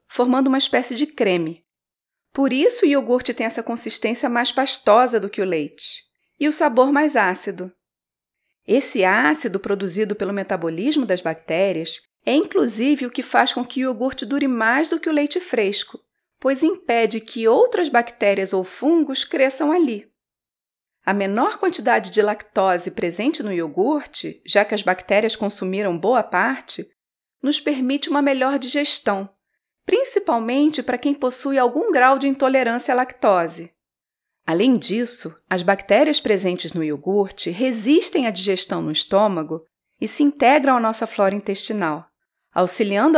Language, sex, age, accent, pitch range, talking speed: Portuguese, female, 30-49, Brazilian, 200-280 Hz, 145 wpm